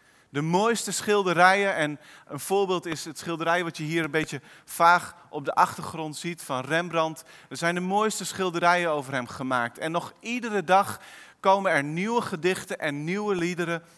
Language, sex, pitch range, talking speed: Dutch, male, 155-200 Hz, 170 wpm